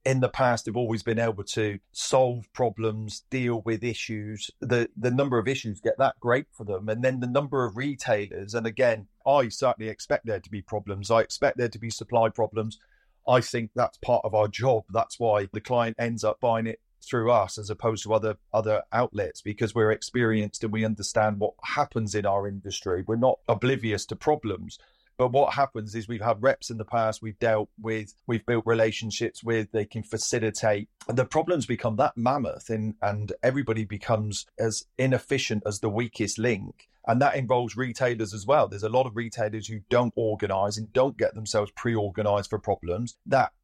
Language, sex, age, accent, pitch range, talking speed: English, male, 40-59, British, 110-125 Hz, 195 wpm